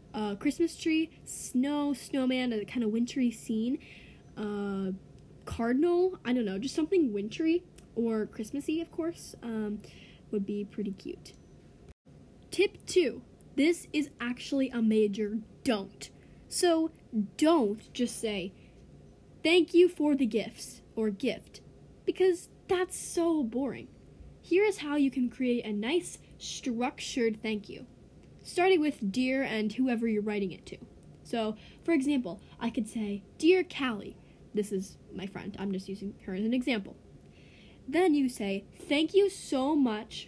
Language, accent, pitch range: English, American, 210-300 Hz